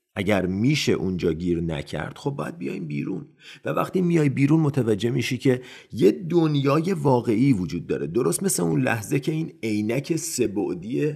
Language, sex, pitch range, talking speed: Persian, male, 100-140 Hz, 155 wpm